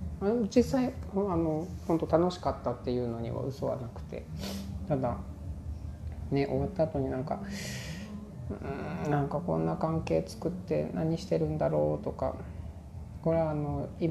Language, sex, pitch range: Japanese, male, 90-150 Hz